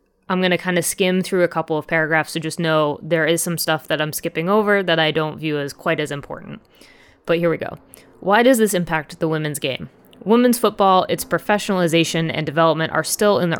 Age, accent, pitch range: 20-39, American, 160-195 Hz